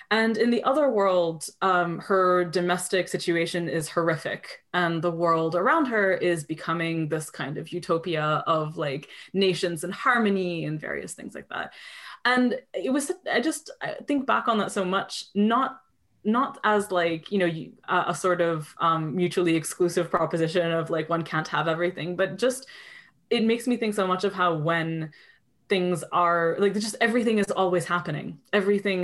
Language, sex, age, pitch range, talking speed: English, female, 20-39, 170-205 Hz, 170 wpm